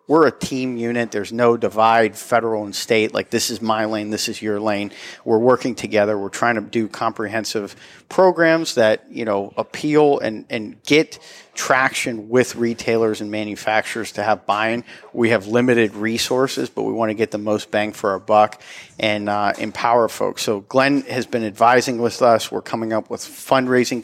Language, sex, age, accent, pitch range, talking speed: English, male, 40-59, American, 110-125 Hz, 185 wpm